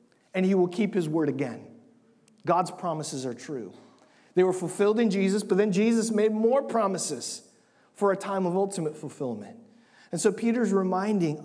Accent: American